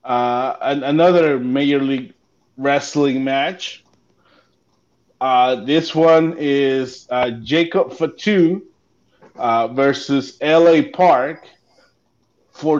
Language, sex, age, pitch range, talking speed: English, male, 30-49, 125-175 Hz, 90 wpm